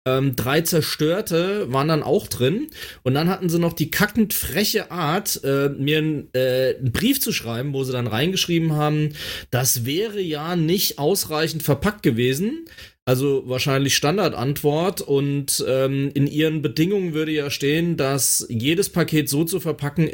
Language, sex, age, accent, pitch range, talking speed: German, male, 30-49, German, 135-180 Hz, 160 wpm